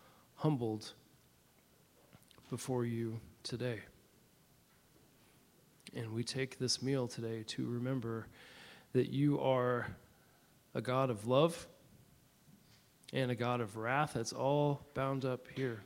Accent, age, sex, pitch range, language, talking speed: American, 40-59, male, 120-135 Hz, English, 110 wpm